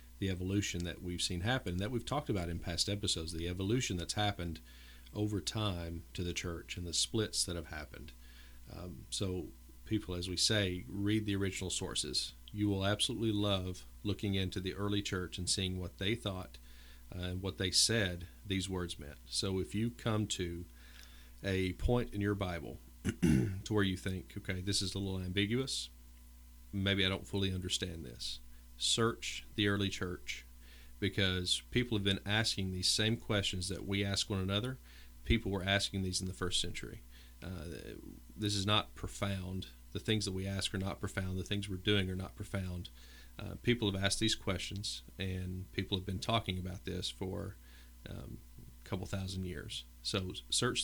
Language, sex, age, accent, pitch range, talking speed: English, male, 40-59, American, 65-100 Hz, 180 wpm